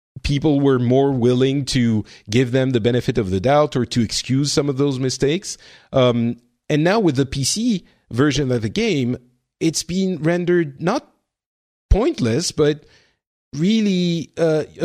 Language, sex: English, male